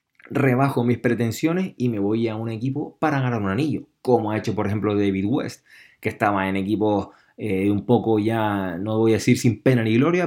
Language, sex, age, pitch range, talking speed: Spanish, male, 20-39, 105-130 Hz, 205 wpm